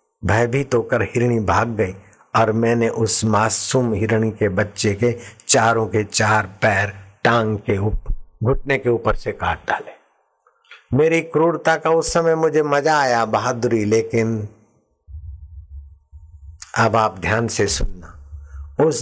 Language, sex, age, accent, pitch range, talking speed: Hindi, male, 60-79, native, 100-125 Hz, 135 wpm